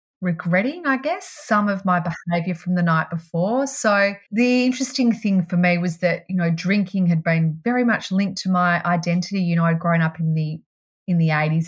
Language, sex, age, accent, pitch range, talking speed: English, female, 30-49, Australian, 160-200 Hz, 205 wpm